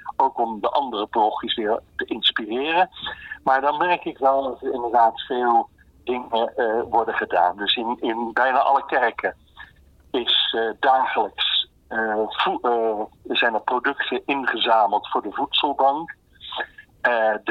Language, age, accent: Dutch, 50-69, Dutch